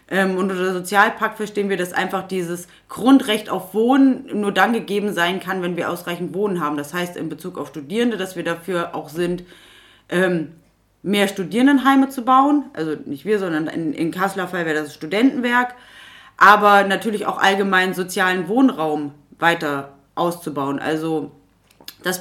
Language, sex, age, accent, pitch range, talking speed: German, female, 30-49, German, 170-215 Hz, 155 wpm